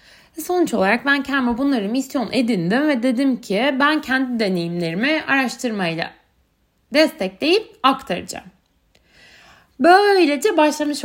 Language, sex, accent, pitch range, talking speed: Turkish, female, native, 210-295 Hz, 100 wpm